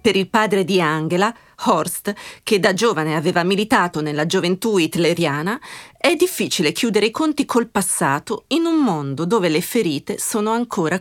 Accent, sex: native, female